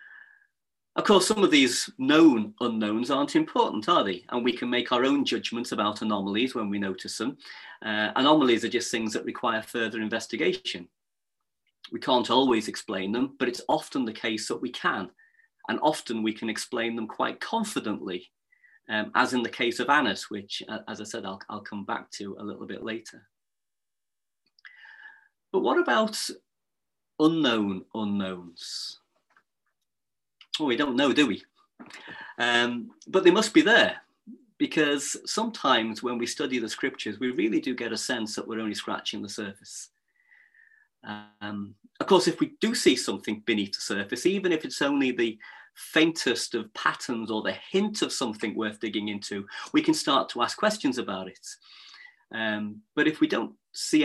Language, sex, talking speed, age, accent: English, male, 170 wpm, 30-49, British